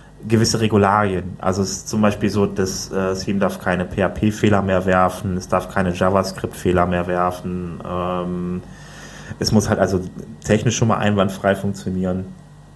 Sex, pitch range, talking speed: male, 90-105 Hz, 155 wpm